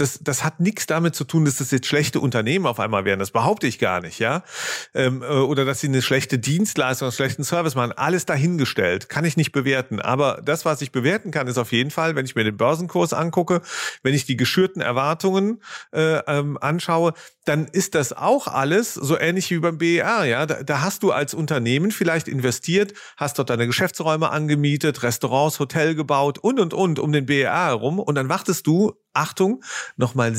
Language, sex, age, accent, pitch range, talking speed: German, male, 40-59, German, 135-175 Hz, 200 wpm